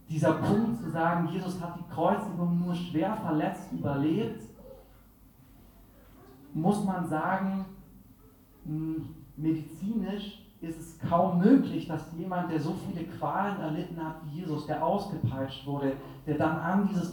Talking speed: 130 wpm